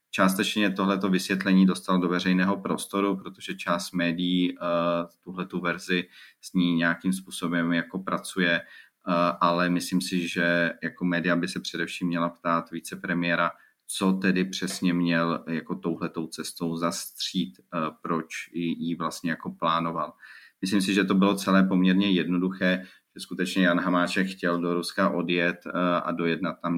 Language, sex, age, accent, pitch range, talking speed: Czech, male, 30-49, native, 85-95 Hz, 150 wpm